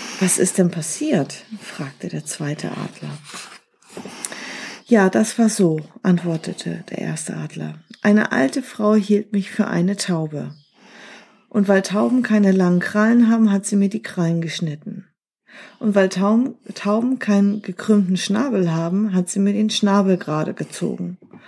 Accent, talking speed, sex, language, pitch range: German, 140 wpm, female, German, 175-215 Hz